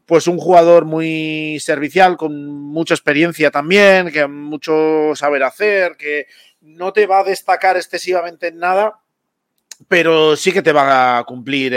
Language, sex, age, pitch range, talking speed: Spanish, male, 30-49, 135-170 Hz, 150 wpm